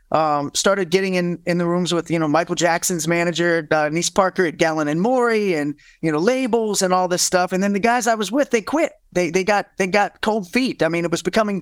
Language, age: English, 30-49